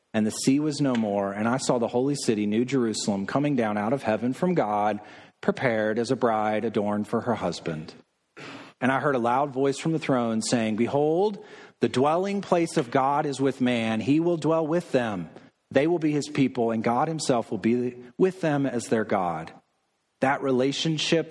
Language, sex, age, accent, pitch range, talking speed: English, male, 40-59, American, 110-135 Hz, 195 wpm